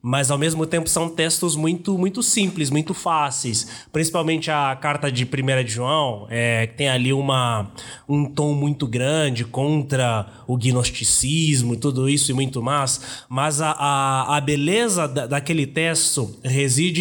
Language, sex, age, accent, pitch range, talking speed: Portuguese, male, 20-39, Brazilian, 140-185 Hz, 155 wpm